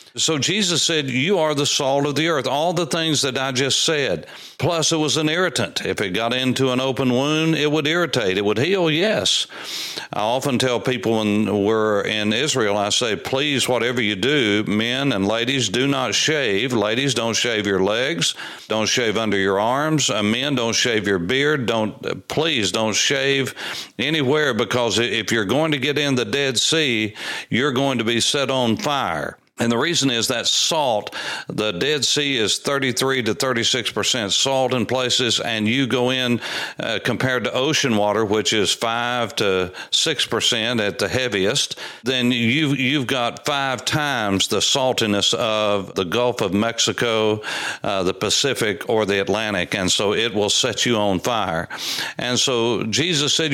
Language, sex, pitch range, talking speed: English, male, 110-145 Hz, 180 wpm